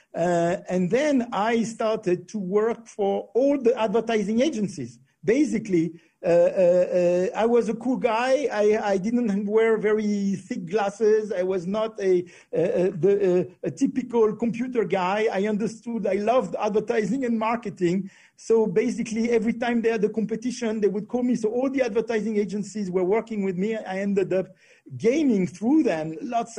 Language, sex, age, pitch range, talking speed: Portuguese, male, 50-69, 190-225 Hz, 165 wpm